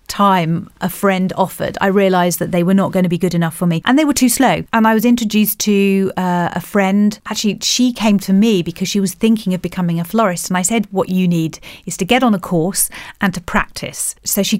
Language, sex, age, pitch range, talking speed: English, female, 40-59, 180-205 Hz, 245 wpm